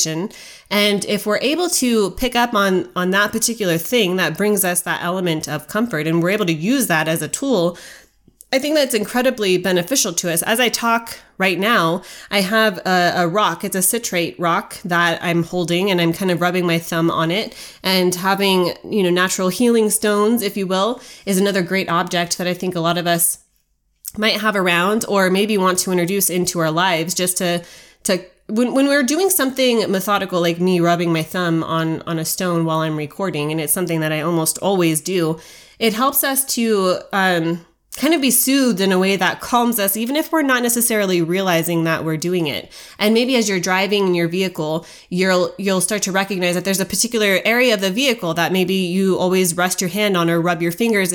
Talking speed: 210 wpm